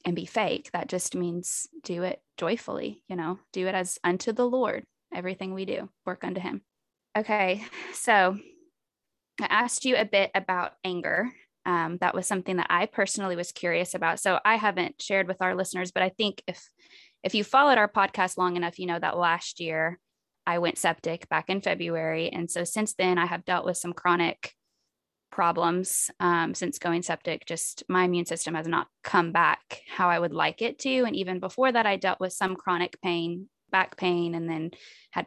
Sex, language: female, English